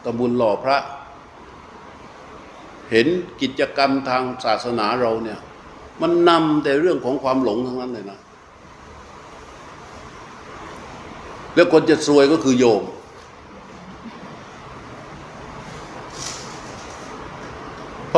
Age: 60-79